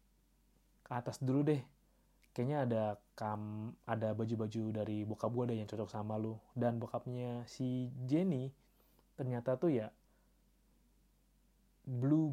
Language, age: Indonesian, 30-49